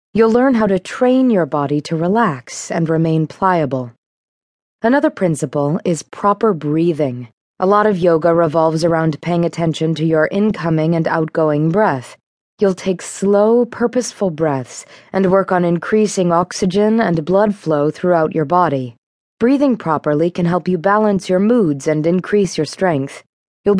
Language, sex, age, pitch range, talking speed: English, female, 20-39, 155-205 Hz, 150 wpm